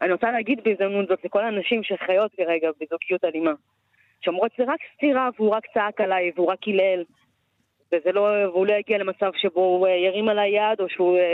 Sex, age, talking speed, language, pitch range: female, 20-39, 180 wpm, Hebrew, 170-215 Hz